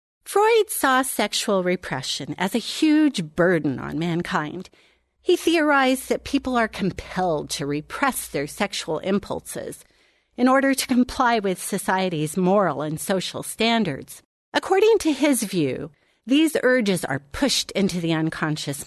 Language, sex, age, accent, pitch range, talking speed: English, female, 40-59, American, 165-260 Hz, 135 wpm